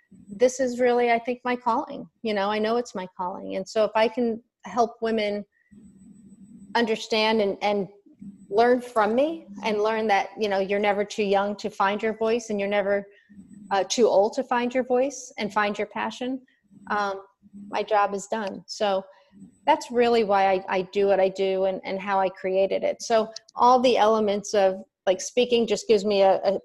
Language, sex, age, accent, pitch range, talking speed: English, female, 30-49, American, 200-230 Hz, 195 wpm